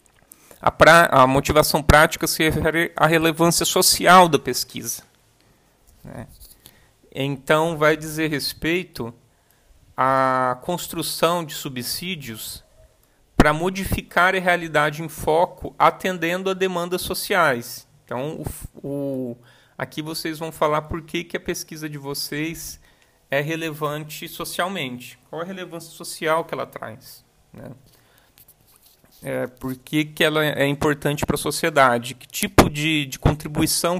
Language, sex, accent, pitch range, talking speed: Portuguese, male, Brazilian, 135-170 Hz, 125 wpm